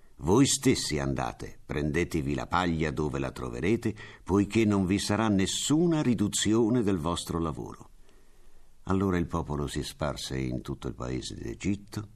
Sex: male